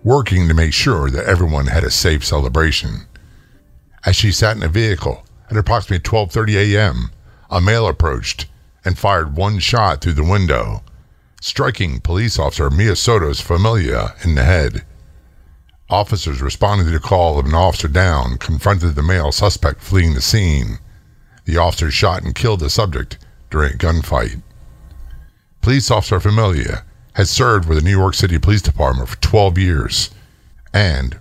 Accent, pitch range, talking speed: American, 75-105 Hz, 155 wpm